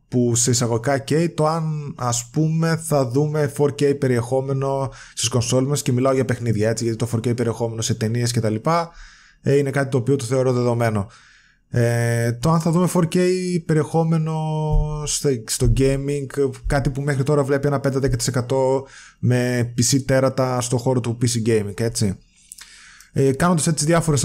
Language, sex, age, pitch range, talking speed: Greek, male, 20-39, 115-145 Hz, 165 wpm